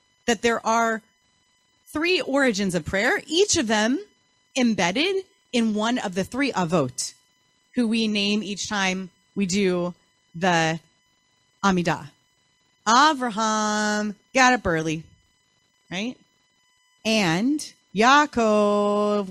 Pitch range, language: 175-250 Hz, English